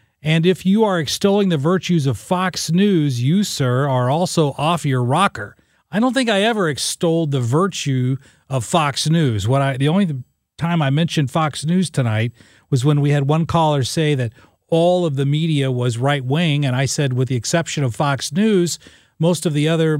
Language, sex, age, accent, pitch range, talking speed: English, male, 40-59, American, 130-165 Hz, 195 wpm